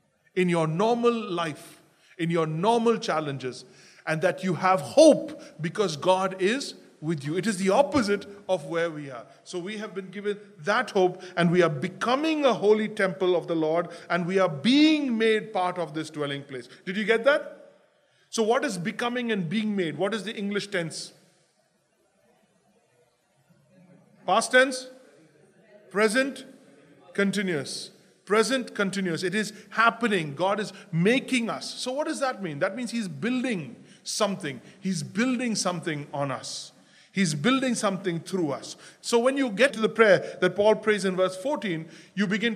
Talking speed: 165 wpm